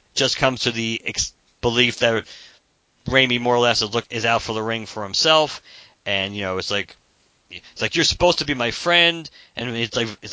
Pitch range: 115-145 Hz